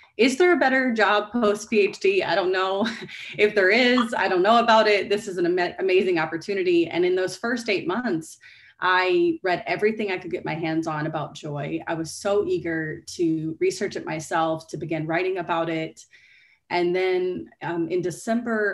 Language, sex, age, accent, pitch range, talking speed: English, female, 30-49, American, 160-200 Hz, 185 wpm